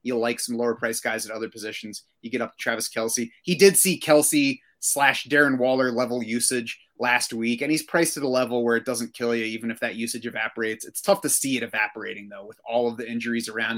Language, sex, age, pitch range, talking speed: English, male, 30-49, 120-150 Hz, 240 wpm